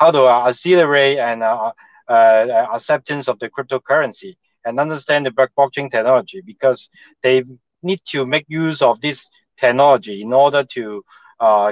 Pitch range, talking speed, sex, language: 120-150 Hz, 145 wpm, male, Italian